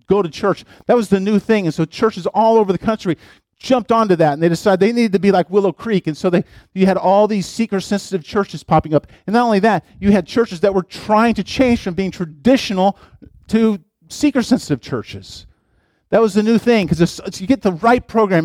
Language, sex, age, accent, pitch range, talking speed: English, male, 50-69, American, 170-225 Hz, 230 wpm